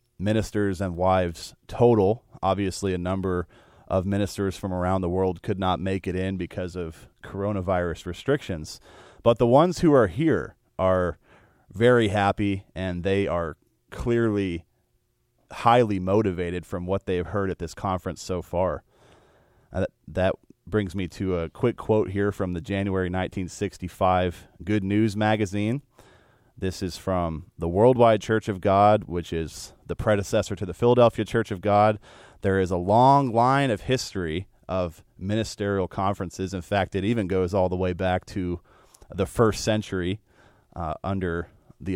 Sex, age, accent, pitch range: male, 30-49, American, 90-110 Hz